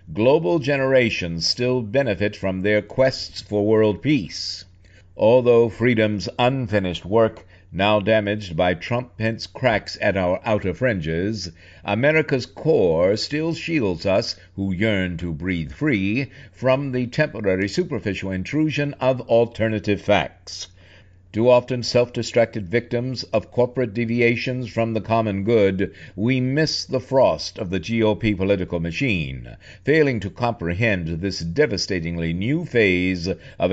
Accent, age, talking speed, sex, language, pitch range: American, 60-79, 125 wpm, male, English, 90-120 Hz